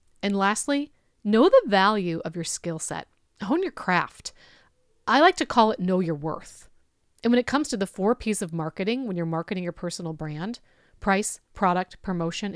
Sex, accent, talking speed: female, American, 185 wpm